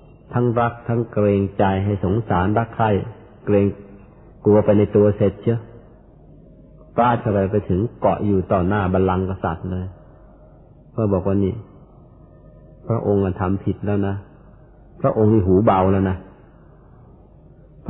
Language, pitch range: Thai, 95-115 Hz